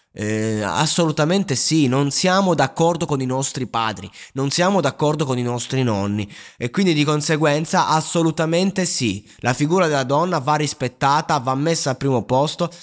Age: 20-39